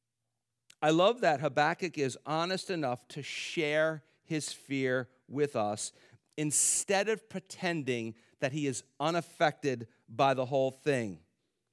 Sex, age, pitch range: male, 50-69, 130-165 Hz